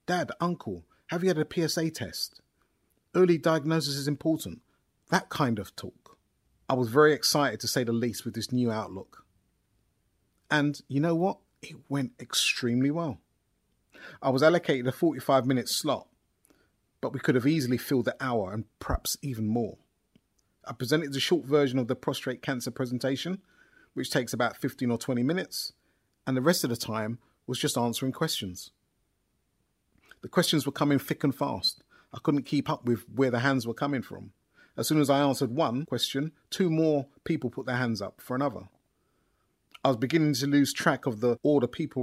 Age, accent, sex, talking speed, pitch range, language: 30-49, British, male, 180 wpm, 120-155 Hz, English